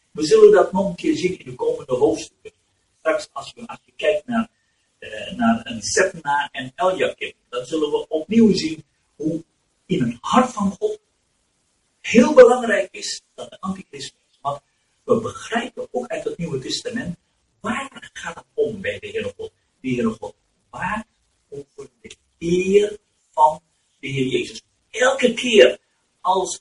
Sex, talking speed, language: male, 155 wpm, Turkish